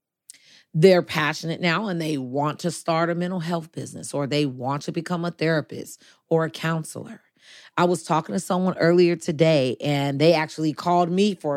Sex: female